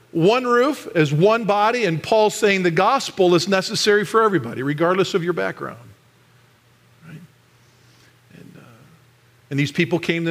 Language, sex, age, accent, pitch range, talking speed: English, male, 50-69, American, 140-200 Hz, 150 wpm